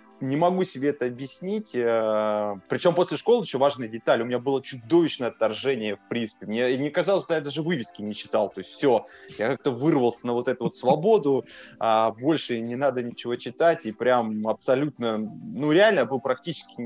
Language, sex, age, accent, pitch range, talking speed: Russian, male, 20-39, native, 115-160 Hz, 180 wpm